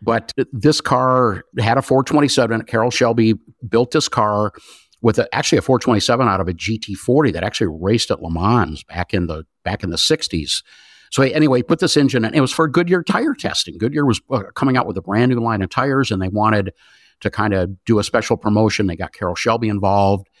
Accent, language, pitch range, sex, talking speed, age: American, English, 95-125 Hz, male, 210 wpm, 50-69